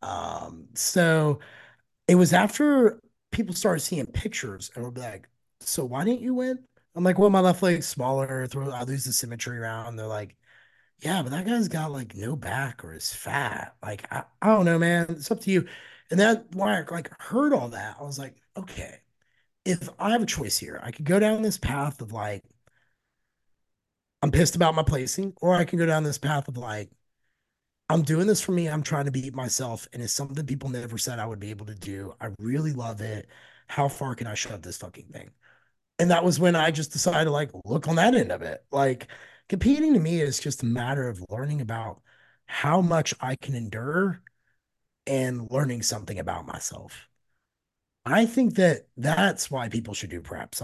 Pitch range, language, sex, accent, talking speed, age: 120-175 Hz, English, male, American, 205 wpm, 30-49